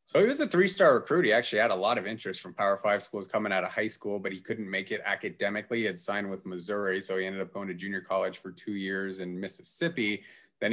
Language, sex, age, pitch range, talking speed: English, male, 30-49, 100-115 Hz, 265 wpm